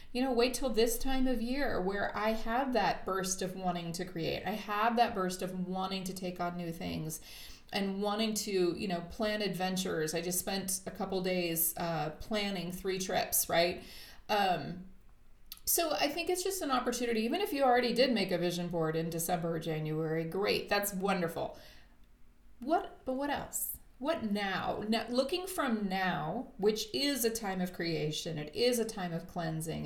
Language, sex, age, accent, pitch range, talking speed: English, female, 30-49, American, 180-225 Hz, 185 wpm